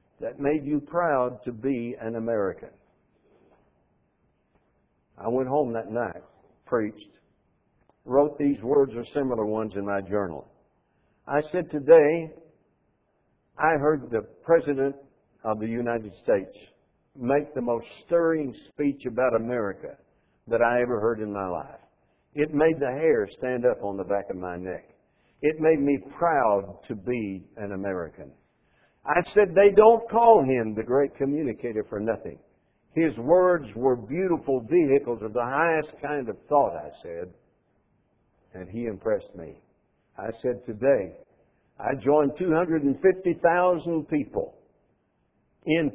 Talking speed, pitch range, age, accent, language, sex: 135 wpm, 115-160 Hz, 60-79, American, English, male